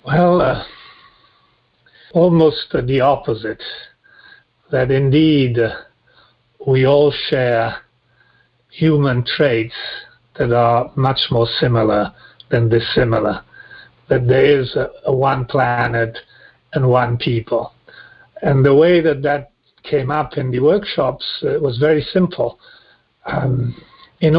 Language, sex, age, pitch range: English, male, 50-69, 125-160 Hz